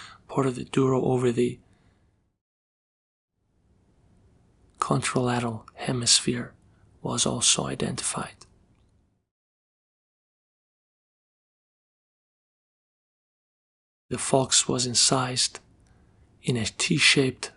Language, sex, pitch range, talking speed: English, male, 100-130 Hz, 60 wpm